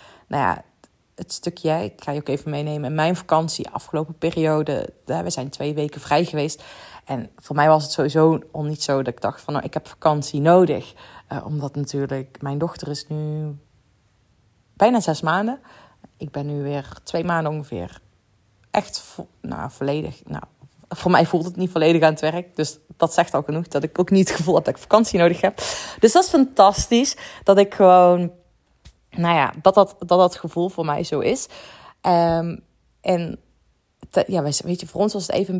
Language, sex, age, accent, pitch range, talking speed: Dutch, female, 30-49, Dutch, 150-180 Hz, 195 wpm